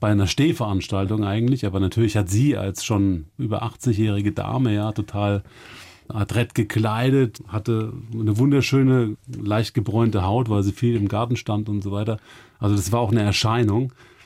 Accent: German